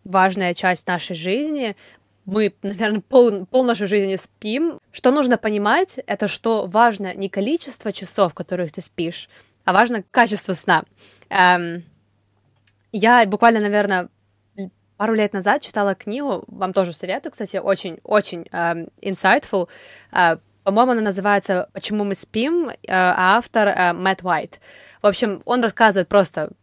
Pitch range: 185-225 Hz